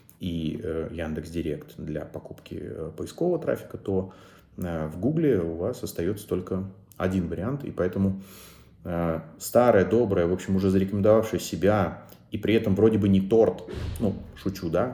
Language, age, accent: Russian, 30-49, native